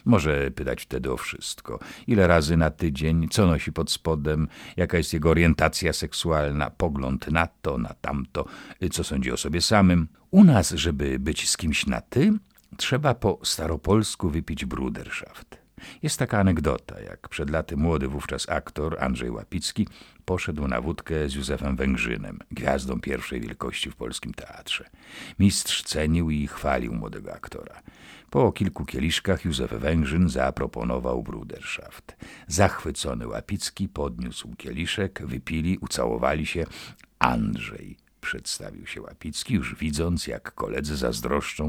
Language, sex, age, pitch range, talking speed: Polish, male, 50-69, 70-90 Hz, 135 wpm